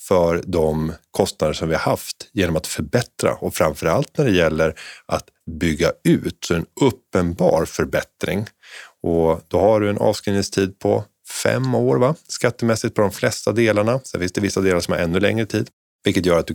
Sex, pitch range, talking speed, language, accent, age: male, 85-105 Hz, 185 wpm, Swedish, native, 30-49